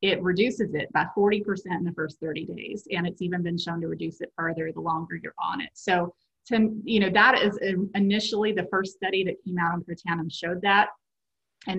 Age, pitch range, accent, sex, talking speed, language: 30-49, 170-200 Hz, American, female, 215 wpm, English